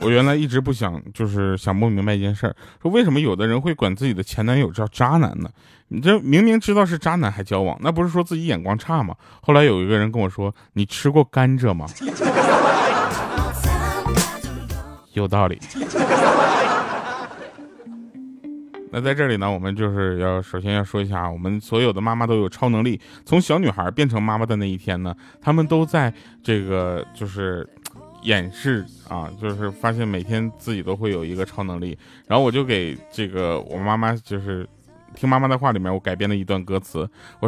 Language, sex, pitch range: Chinese, male, 95-130 Hz